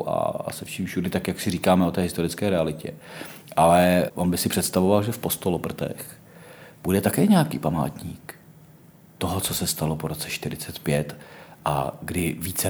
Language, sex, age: Czech, male, 40-59